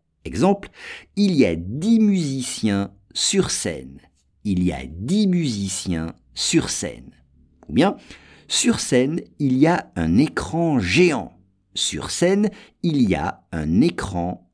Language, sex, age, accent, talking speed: English, male, 50-69, French, 130 wpm